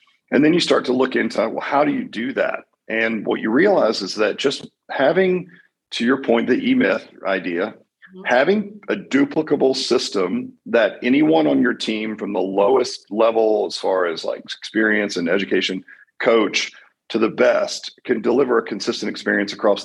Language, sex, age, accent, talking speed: English, male, 40-59, American, 170 wpm